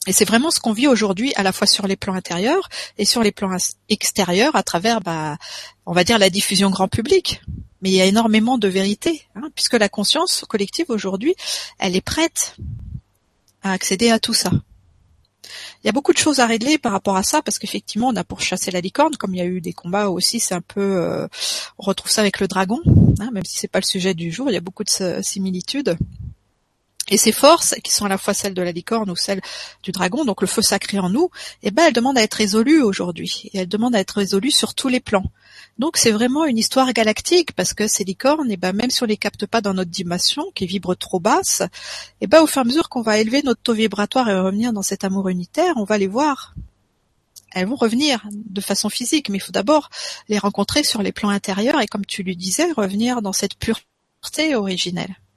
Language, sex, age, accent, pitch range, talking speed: French, female, 40-59, French, 190-250 Hz, 235 wpm